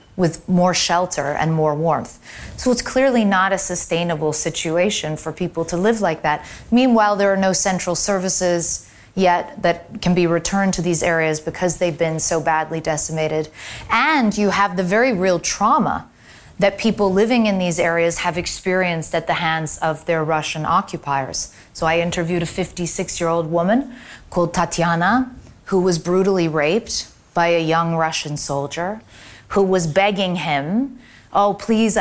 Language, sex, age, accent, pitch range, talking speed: English, female, 30-49, American, 165-195 Hz, 155 wpm